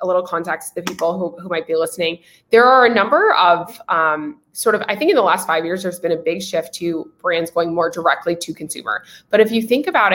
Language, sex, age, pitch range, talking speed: English, female, 20-39, 170-220 Hz, 255 wpm